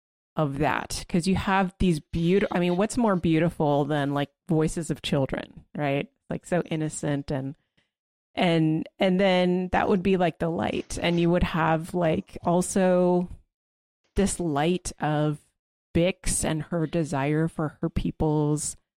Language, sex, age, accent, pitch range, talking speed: English, female, 30-49, American, 150-180 Hz, 150 wpm